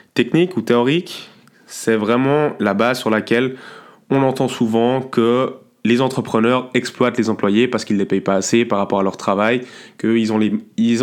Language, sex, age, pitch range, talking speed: French, male, 20-39, 105-120 Hz, 170 wpm